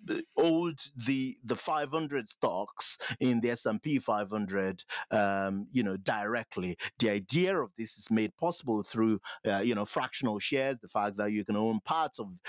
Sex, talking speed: male, 175 wpm